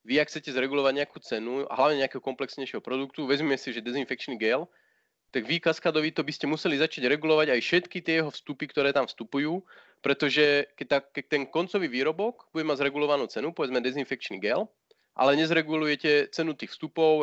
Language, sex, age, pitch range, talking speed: Slovak, male, 30-49, 125-155 Hz, 175 wpm